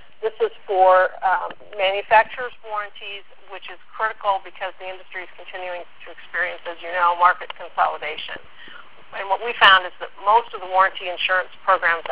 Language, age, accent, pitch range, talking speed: English, 50-69, American, 180-200 Hz, 165 wpm